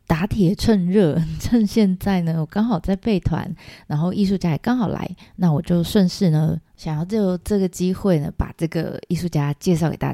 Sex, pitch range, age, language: female, 160-200 Hz, 20-39, Chinese